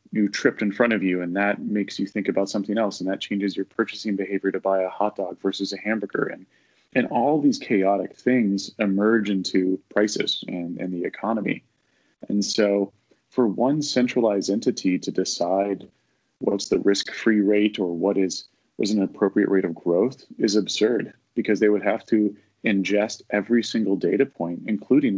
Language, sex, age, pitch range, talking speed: English, male, 30-49, 95-110 Hz, 180 wpm